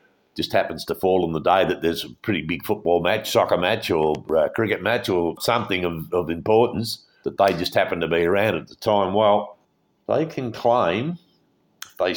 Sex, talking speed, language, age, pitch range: male, 190 wpm, English, 60-79, 90-150 Hz